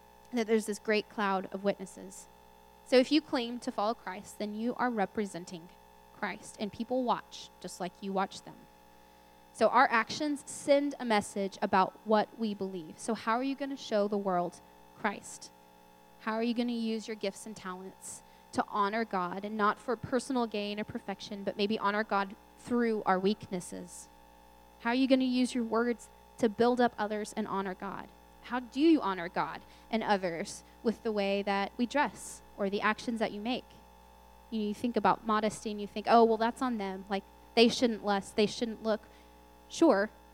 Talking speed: 190 wpm